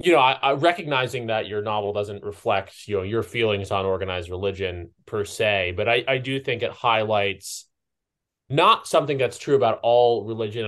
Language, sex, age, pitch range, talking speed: English, male, 20-39, 100-115 Hz, 185 wpm